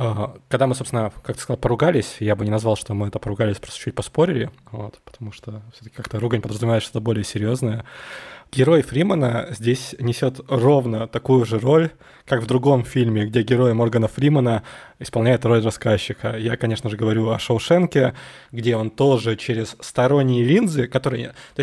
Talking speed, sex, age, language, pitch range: 170 wpm, male, 20-39, Russian, 115-135 Hz